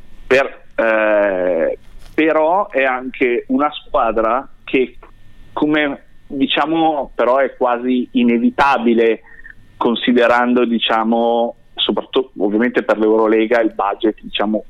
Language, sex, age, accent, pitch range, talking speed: Italian, male, 30-49, native, 115-160 Hz, 95 wpm